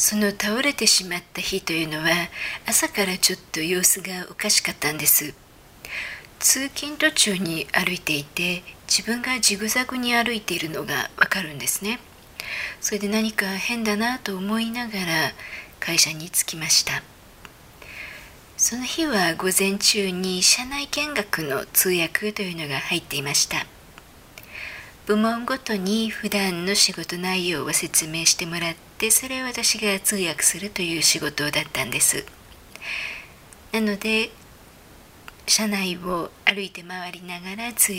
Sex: female